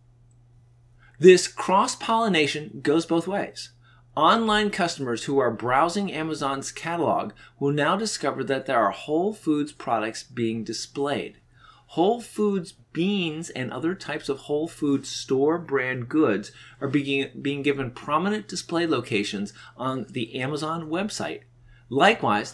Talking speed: 125 wpm